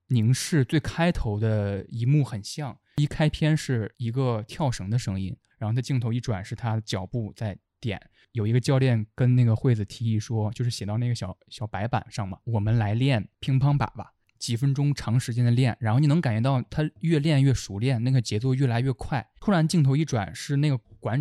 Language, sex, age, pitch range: Chinese, male, 20-39, 105-135 Hz